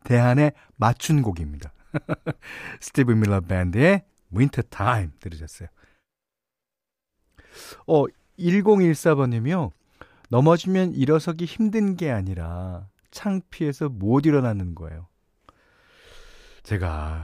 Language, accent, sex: Korean, native, male